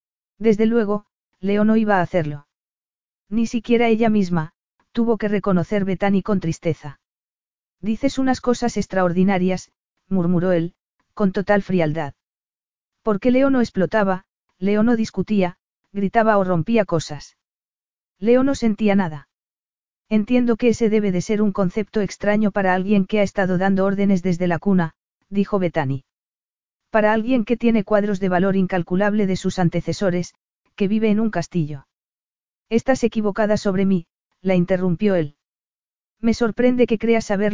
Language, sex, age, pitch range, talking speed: Spanish, female, 40-59, 180-215 Hz, 145 wpm